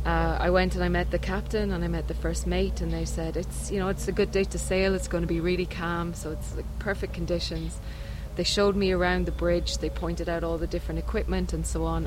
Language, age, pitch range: English, 20-39, 165-200 Hz